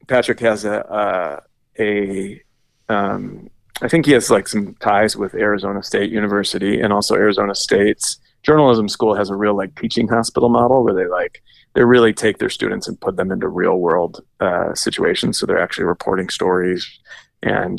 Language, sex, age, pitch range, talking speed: English, male, 30-49, 100-120 Hz, 175 wpm